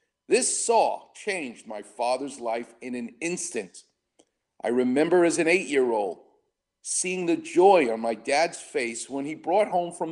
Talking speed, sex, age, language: 155 wpm, male, 50-69, English